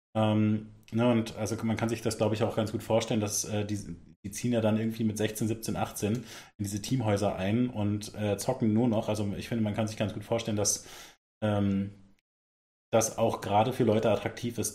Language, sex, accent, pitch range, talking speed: German, male, German, 105-115 Hz, 215 wpm